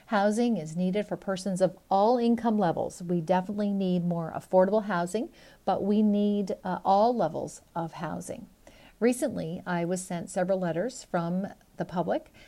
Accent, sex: American, female